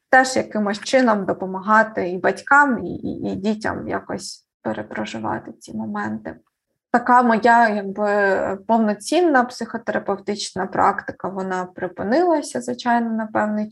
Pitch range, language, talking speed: 190-225 Hz, Ukrainian, 110 wpm